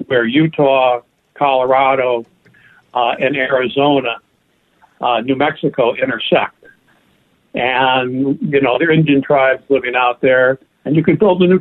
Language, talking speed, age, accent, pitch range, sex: English, 135 wpm, 60-79, American, 130-160 Hz, male